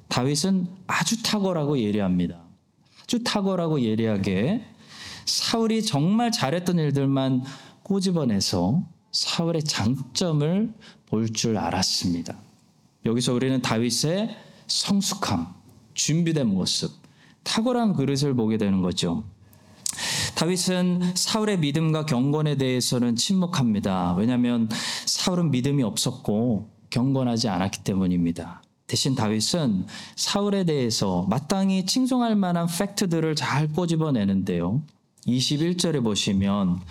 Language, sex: Korean, male